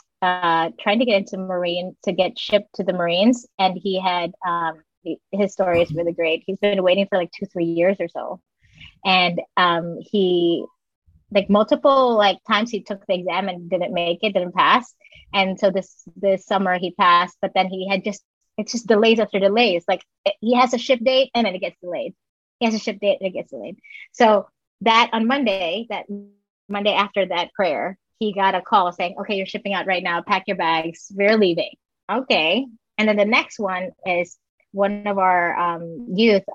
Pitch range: 180-225 Hz